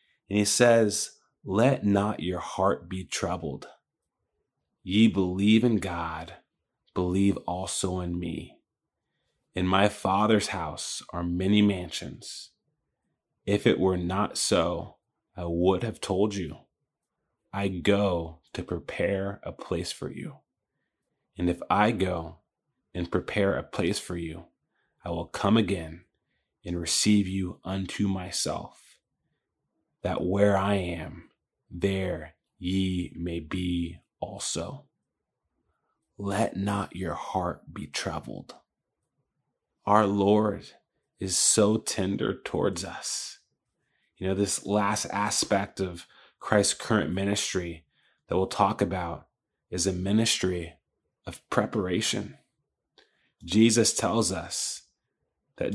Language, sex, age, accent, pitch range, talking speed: English, male, 30-49, American, 90-105 Hz, 115 wpm